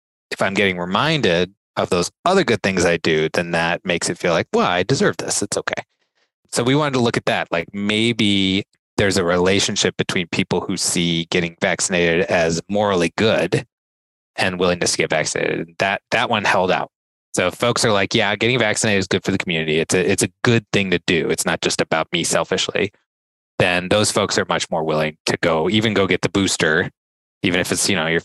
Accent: American